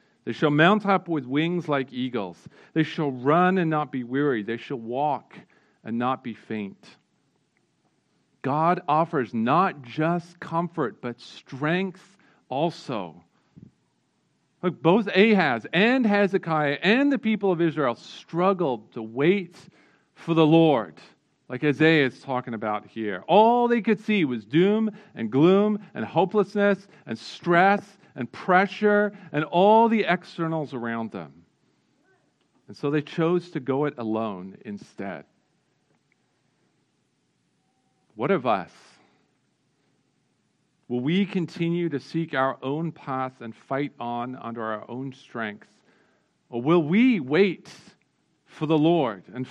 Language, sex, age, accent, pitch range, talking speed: English, male, 40-59, American, 130-180 Hz, 130 wpm